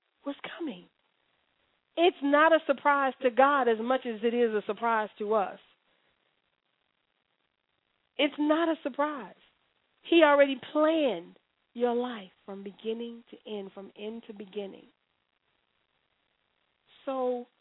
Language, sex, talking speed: English, female, 120 wpm